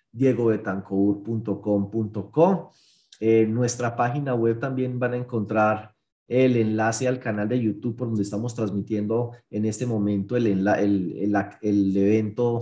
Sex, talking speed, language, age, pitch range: male, 130 wpm, Spanish, 30-49, 105-130 Hz